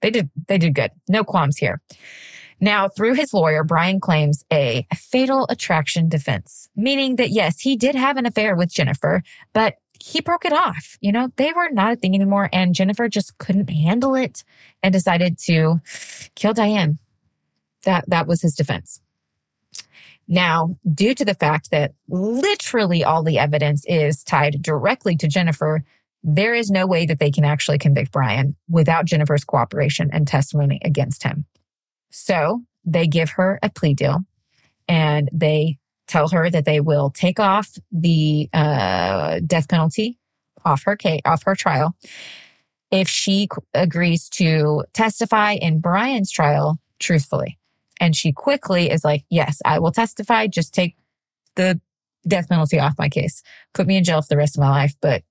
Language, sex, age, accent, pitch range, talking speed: English, female, 20-39, American, 150-195 Hz, 165 wpm